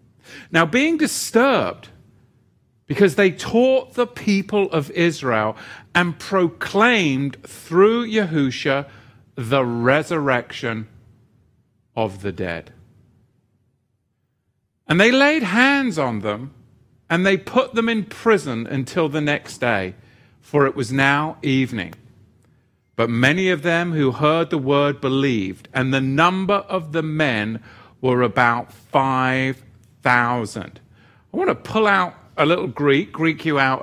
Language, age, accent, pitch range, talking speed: English, 40-59, British, 120-170 Hz, 120 wpm